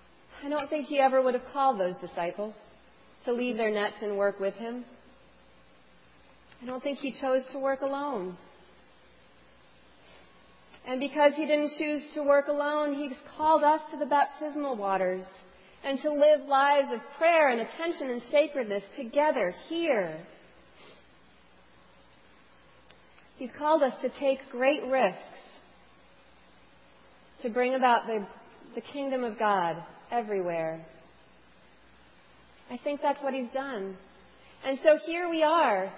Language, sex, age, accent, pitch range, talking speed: English, female, 40-59, American, 215-285 Hz, 135 wpm